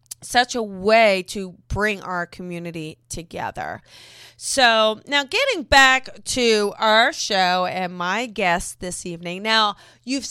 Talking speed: 130 wpm